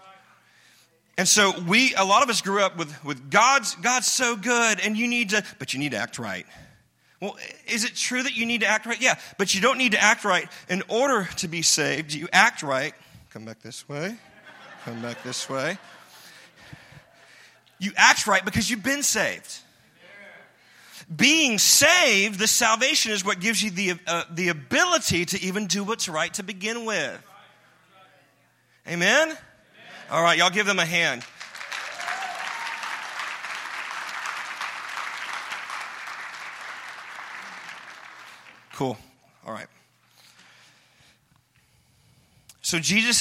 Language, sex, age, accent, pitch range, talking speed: English, male, 40-59, American, 145-225 Hz, 135 wpm